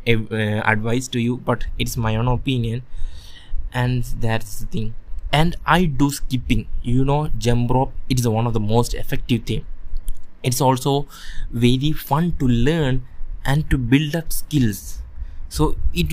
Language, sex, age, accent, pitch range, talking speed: English, male, 20-39, Indian, 90-130 Hz, 155 wpm